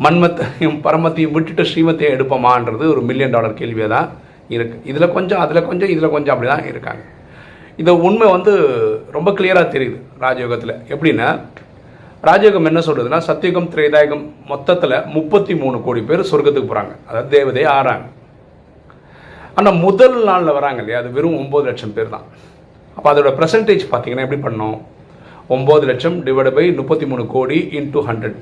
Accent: native